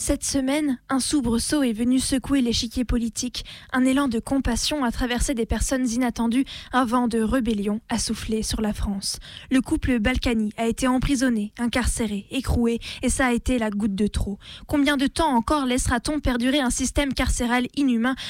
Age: 20-39